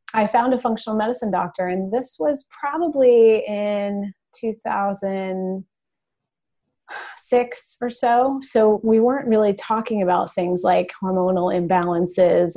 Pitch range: 185-225 Hz